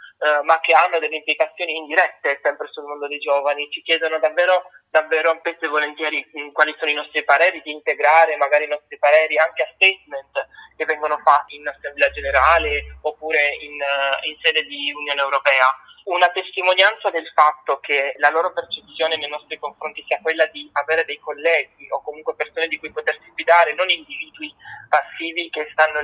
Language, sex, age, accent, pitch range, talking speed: Italian, male, 20-39, native, 145-170 Hz, 175 wpm